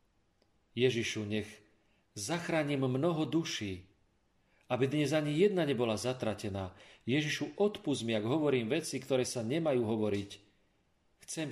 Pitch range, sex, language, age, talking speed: 100-130 Hz, male, Slovak, 40-59, 110 wpm